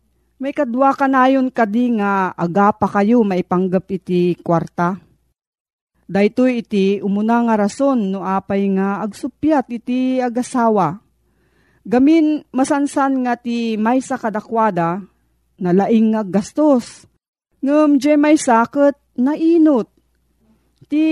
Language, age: Filipino, 40-59